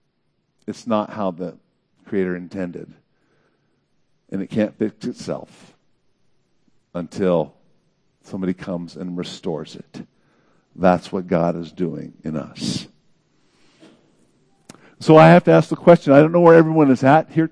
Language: English